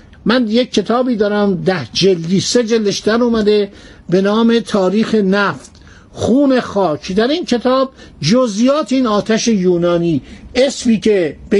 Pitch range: 190-245 Hz